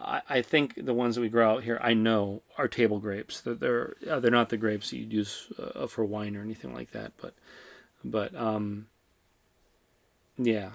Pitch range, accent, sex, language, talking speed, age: 110-120 Hz, American, male, English, 180 wpm, 30-49